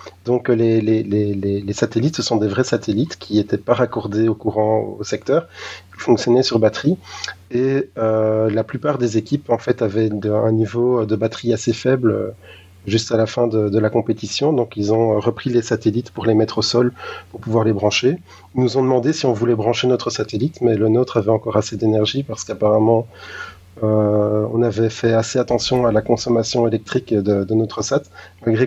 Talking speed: 200 wpm